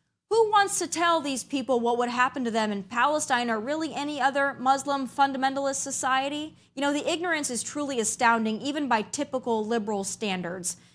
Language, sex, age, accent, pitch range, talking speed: English, female, 20-39, American, 235-300 Hz, 175 wpm